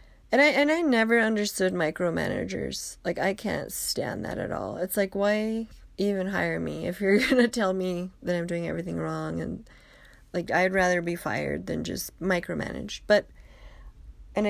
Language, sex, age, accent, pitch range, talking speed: English, female, 20-39, American, 165-215 Hz, 175 wpm